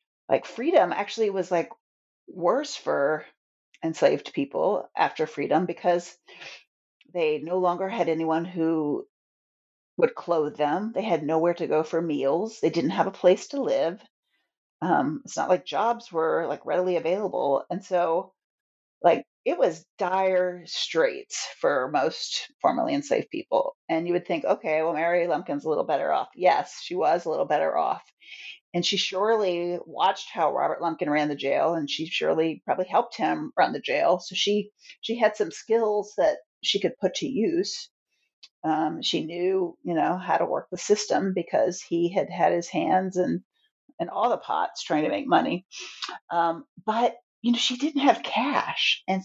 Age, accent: 30-49, American